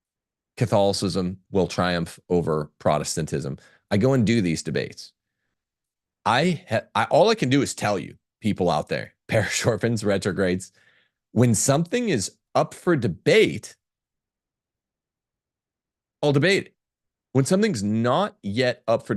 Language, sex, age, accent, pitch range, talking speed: English, male, 40-59, American, 100-140 Hz, 130 wpm